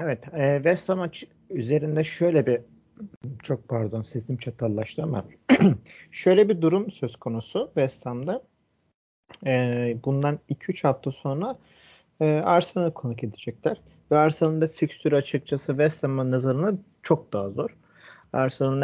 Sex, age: male, 40-59